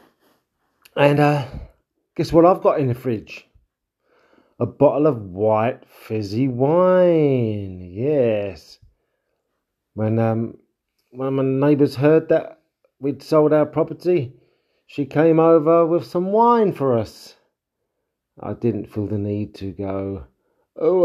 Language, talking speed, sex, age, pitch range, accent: English, 125 wpm, male, 40-59, 105-145 Hz, British